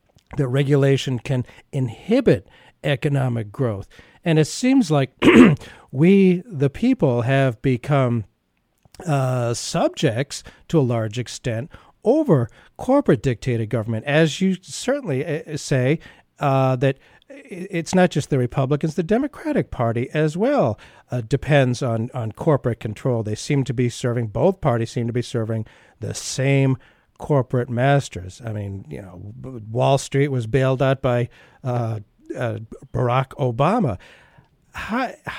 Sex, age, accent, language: male, 50-69, American, English